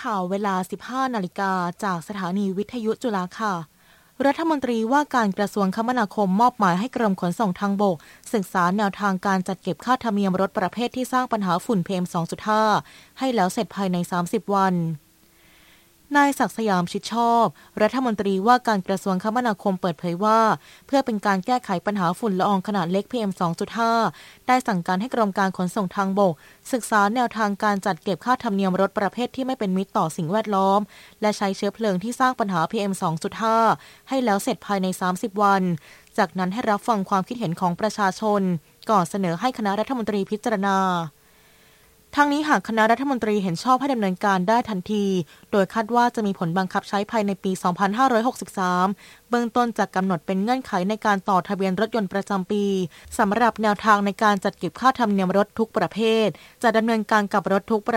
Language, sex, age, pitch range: Thai, female, 20-39, 190-225 Hz